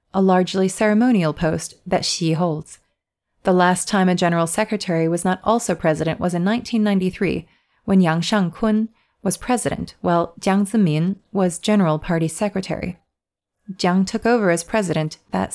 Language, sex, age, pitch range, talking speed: English, female, 30-49, 165-200 Hz, 145 wpm